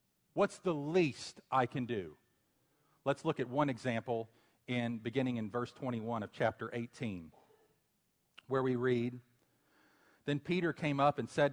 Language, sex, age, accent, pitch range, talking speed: English, male, 40-59, American, 120-170 Hz, 145 wpm